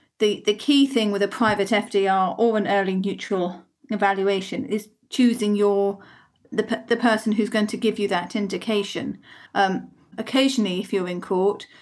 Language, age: English, 40-59